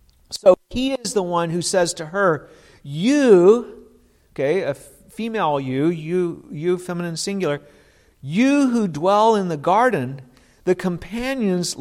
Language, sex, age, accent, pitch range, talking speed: English, male, 50-69, American, 160-215 Hz, 125 wpm